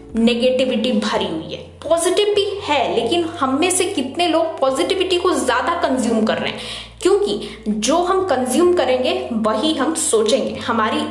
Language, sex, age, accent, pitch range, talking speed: Hindi, female, 20-39, native, 250-345 Hz, 155 wpm